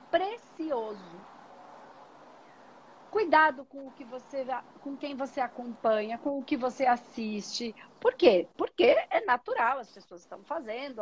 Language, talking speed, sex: Portuguese, 130 wpm, female